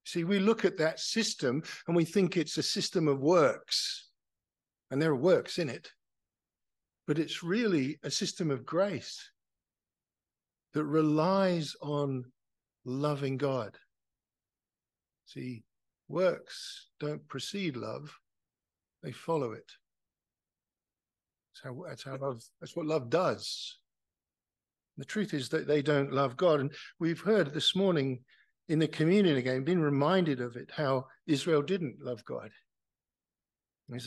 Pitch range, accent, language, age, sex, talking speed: 140-190 Hz, British, English, 50-69, male, 135 wpm